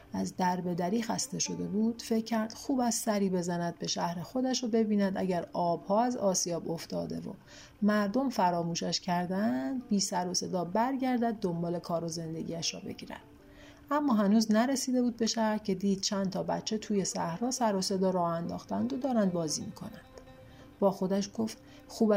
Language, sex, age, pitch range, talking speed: Persian, female, 40-59, 180-240 Hz, 170 wpm